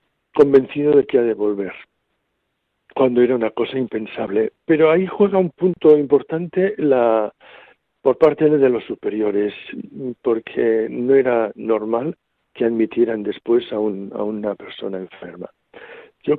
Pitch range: 105-135 Hz